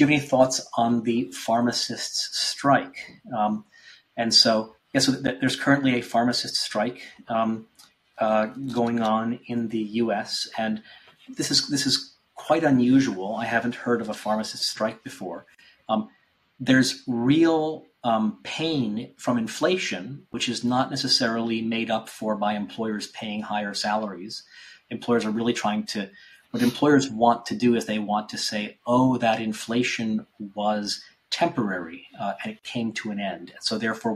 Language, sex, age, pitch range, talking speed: English, male, 40-59, 110-130 Hz, 155 wpm